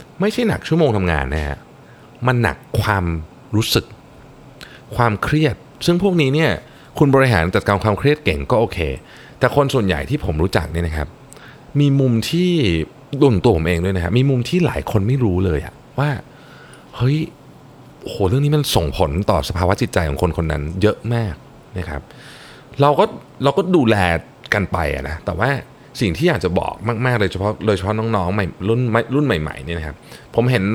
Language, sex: Thai, male